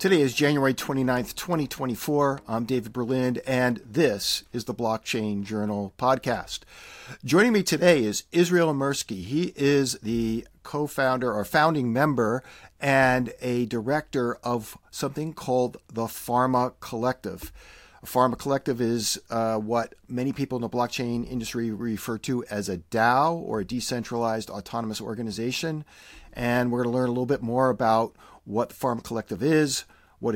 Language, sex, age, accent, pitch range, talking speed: English, male, 50-69, American, 115-140 Hz, 140 wpm